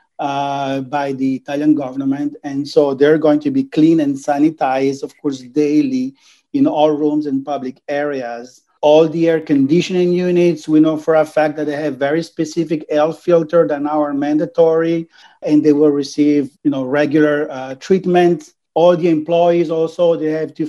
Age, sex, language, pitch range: 40-59, male, English, 145-170 Hz